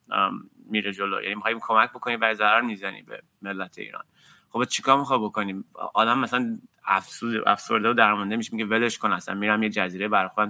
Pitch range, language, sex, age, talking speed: 110-140 Hz, Persian, male, 30-49, 170 wpm